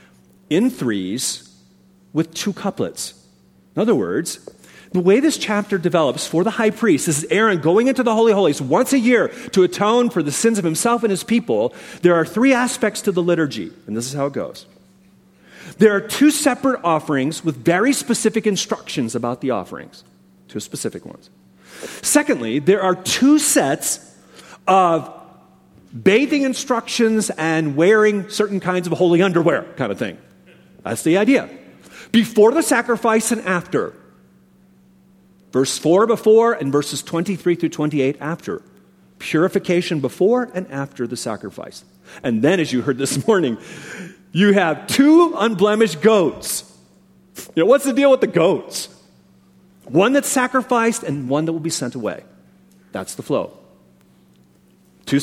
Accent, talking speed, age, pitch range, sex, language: American, 155 wpm, 40-59, 145-225 Hz, male, English